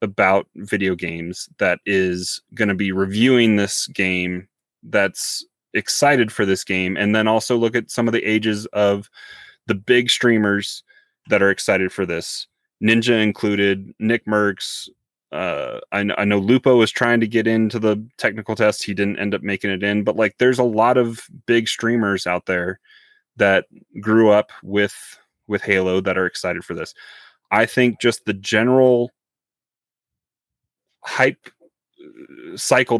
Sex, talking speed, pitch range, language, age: male, 155 wpm, 95-115 Hz, English, 30-49